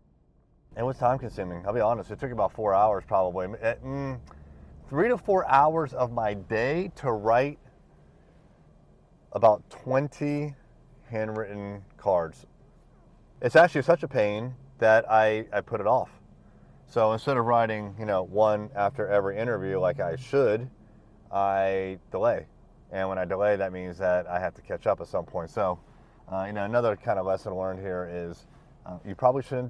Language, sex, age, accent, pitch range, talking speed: English, male, 30-49, American, 95-125 Hz, 165 wpm